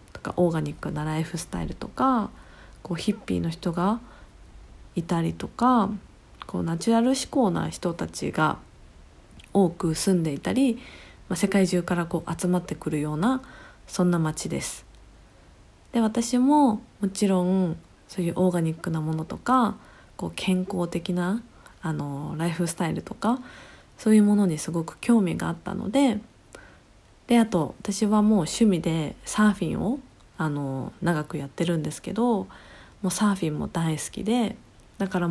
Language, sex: Japanese, female